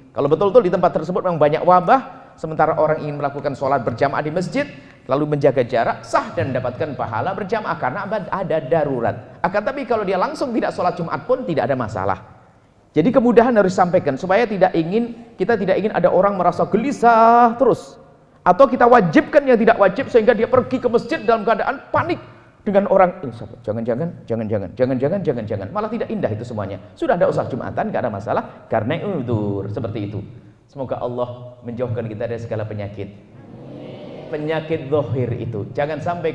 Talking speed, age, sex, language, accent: 170 wpm, 30-49, male, Indonesian, native